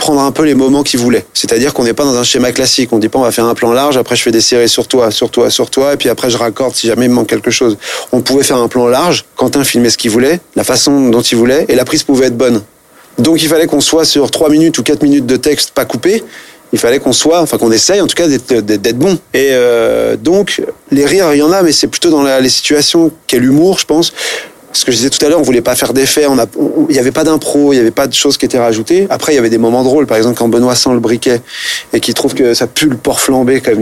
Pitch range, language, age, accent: 115-160 Hz, French, 30-49, French